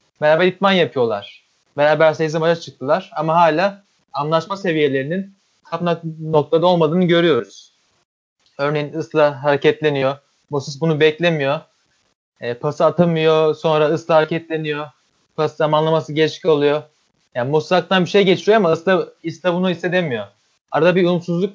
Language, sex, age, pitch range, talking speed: Turkish, male, 30-49, 150-175 Hz, 120 wpm